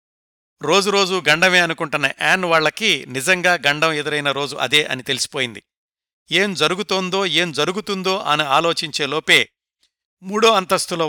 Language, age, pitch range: Telugu, 60-79, 140-185 Hz